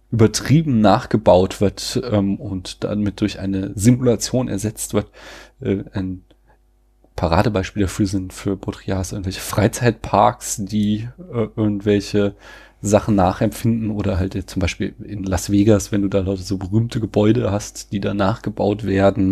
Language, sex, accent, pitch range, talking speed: German, male, German, 100-110 Hz, 140 wpm